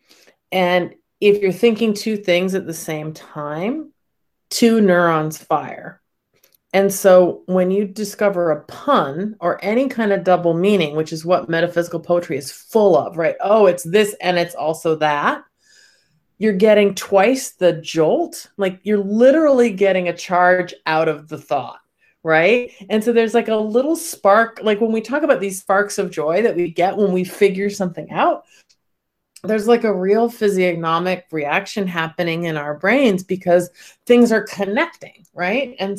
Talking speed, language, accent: 165 wpm, English, American